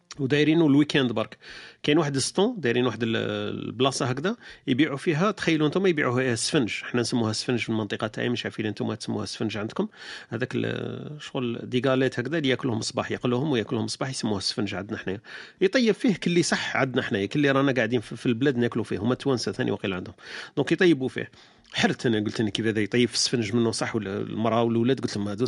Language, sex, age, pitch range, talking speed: Arabic, male, 40-59, 115-155 Hz, 190 wpm